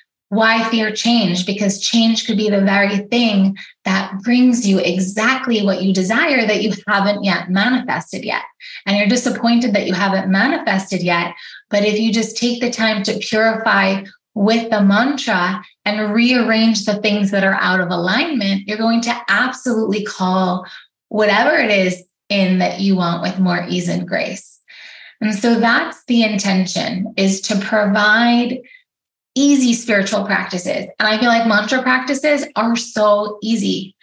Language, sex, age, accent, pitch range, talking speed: English, female, 20-39, American, 195-240 Hz, 155 wpm